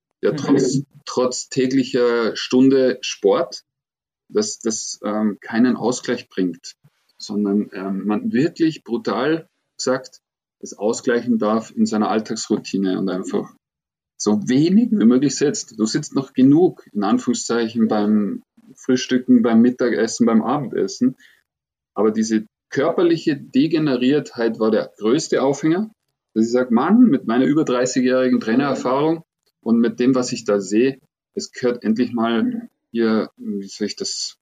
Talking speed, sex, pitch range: 135 wpm, male, 110-175 Hz